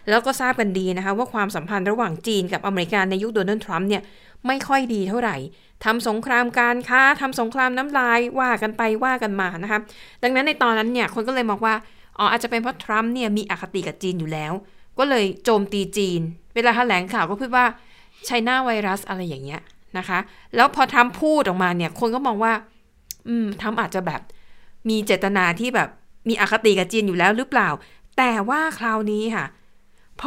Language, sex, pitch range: Thai, female, 195-245 Hz